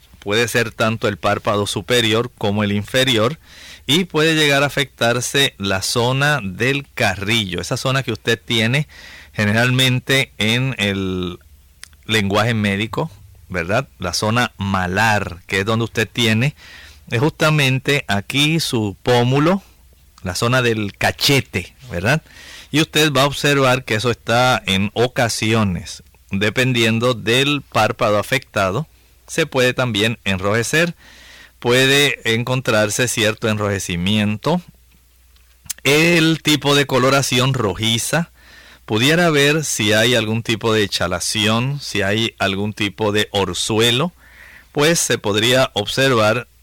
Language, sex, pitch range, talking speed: Spanish, male, 100-135 Hz, 120 wpm